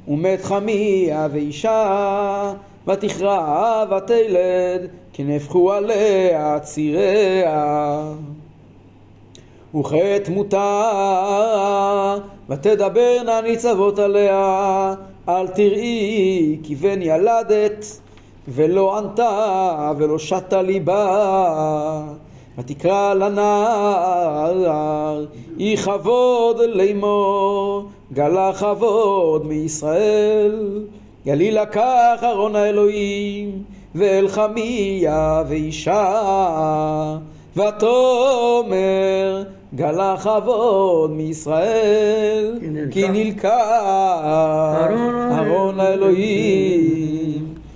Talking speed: 55 wpm